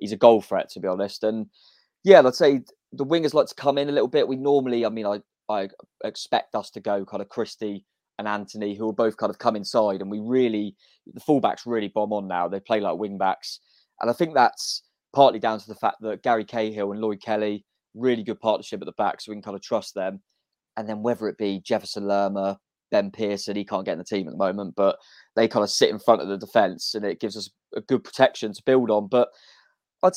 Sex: male